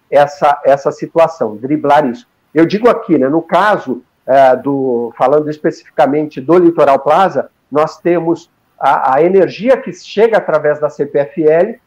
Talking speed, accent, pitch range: 140 wpm, Brazilian, 150-195 Hz